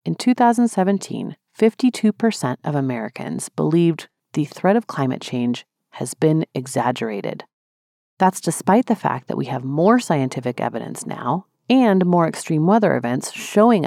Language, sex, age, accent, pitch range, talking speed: English, female, 30-49, American, 125-210 Hz, 130 wpm